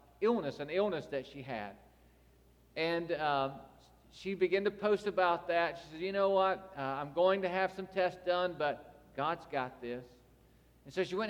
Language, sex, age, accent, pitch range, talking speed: English, male, 50-69, American, 160-195 Hz, 185 wpm